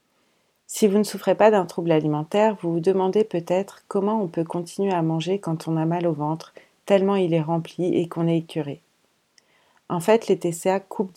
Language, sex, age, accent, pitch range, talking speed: French, female, 40-59, French, 160-185 Hz, 200 wpm